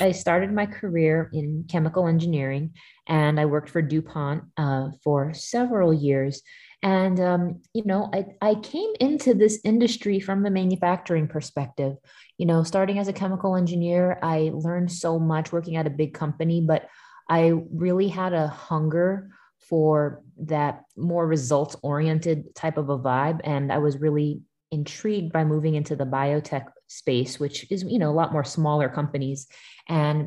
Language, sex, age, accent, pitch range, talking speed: English, female, 20-39, American, 150-180 Hz, 165 wpm